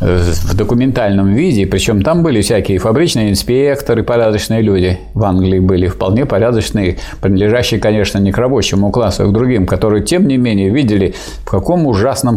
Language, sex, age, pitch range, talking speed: Russian, male, 50-69, 95-120 Hz, 160 wpm